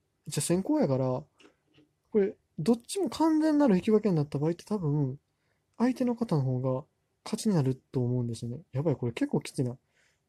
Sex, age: male, 20-39